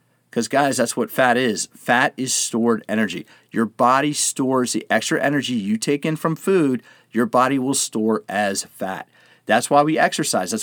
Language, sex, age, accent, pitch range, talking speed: English, male, 40-59, American, 125-165 Hz, 180 wpm